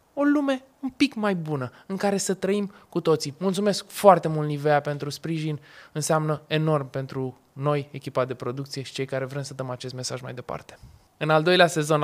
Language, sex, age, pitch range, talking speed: Romanian, male, 20-39, 145-200 Hz, 195 wpm